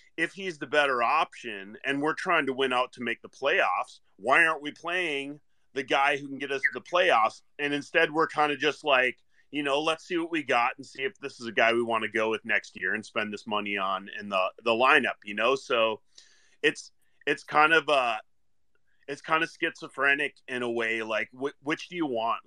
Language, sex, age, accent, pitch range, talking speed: English, male, 30-49, American, 115-160 Hz, 230 wpm